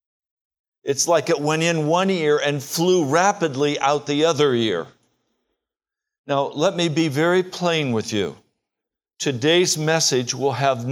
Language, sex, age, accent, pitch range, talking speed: English, male, 60-79, American, 145-190 Hz, 145 wpm